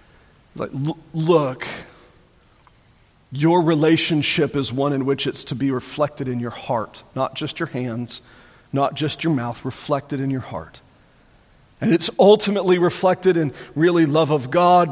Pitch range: 130-160 Hz